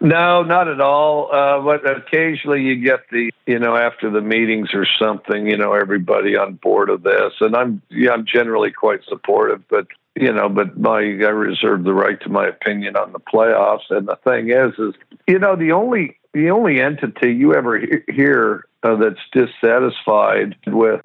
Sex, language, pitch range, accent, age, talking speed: male, English, 105-150 Hz, American, 60-79, 185 wpm